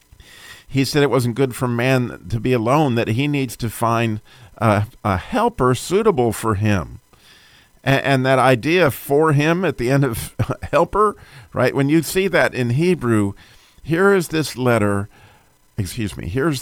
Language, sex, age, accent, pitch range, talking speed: English, male, 50-69, American, 110-135 Hz, 165 wpm